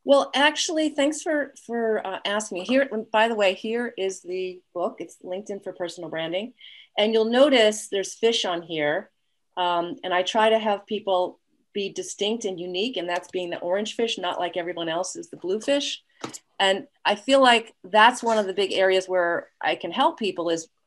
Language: English